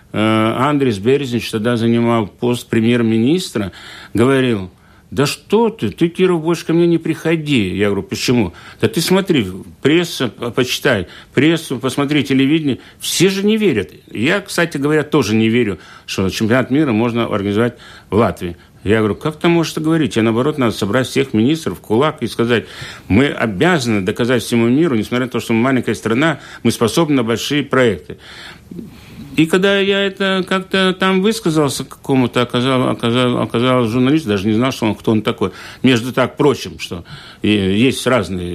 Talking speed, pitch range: 165 wpm, 110-150 Hz